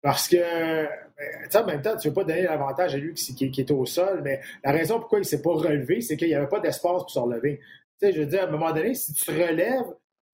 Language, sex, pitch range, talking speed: French, male, 145-190 Hz, 300 wpm